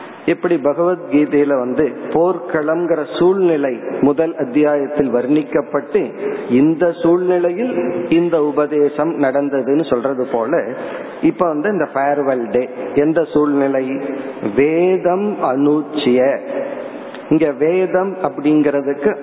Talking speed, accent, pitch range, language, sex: 50 wpm, native, 140-170 Hz, Tamil, male